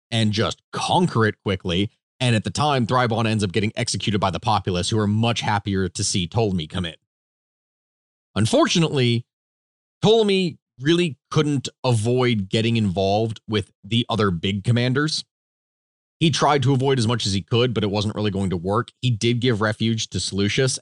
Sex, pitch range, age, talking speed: male, 100-125 Hz, 30-49, 175 wpm